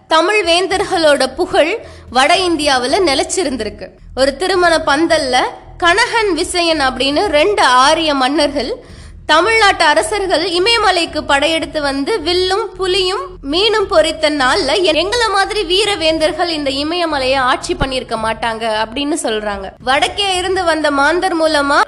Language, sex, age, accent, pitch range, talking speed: Tamil, female, 20-39, native, 275-370 Hz, 100 wpm